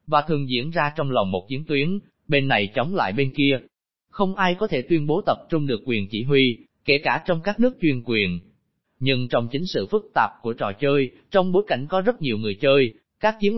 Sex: male